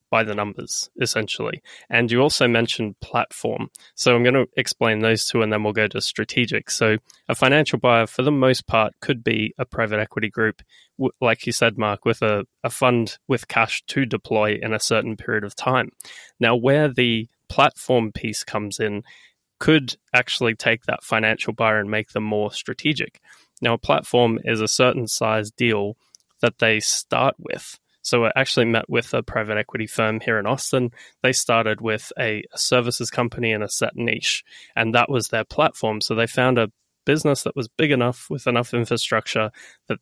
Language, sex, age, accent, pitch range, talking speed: English, male, 20-39, Australian, 110-125 Hz, 185 wpm